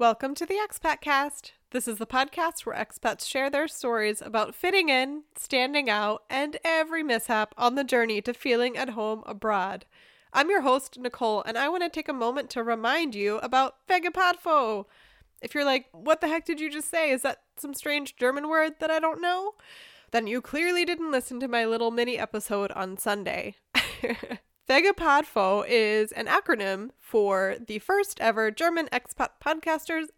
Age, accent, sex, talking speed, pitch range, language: 20-39, American, female, 175 wpm, 225-310 Hz, English